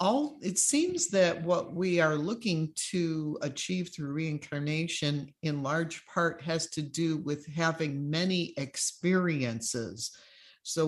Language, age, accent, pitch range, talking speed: English, 50-69, American, 145-175 Hz, 125 wpm